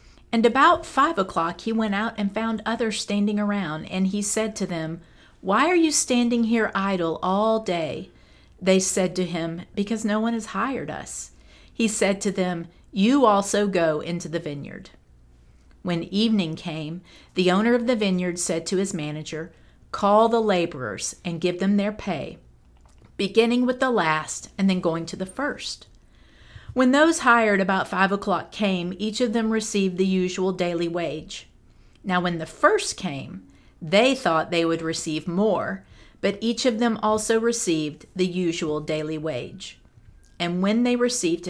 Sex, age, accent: female, 50-69, American